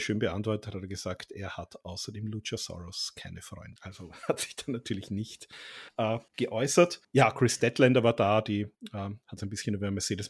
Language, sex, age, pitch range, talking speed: German, male, 40-59, 105-120 Hz, 190 wpm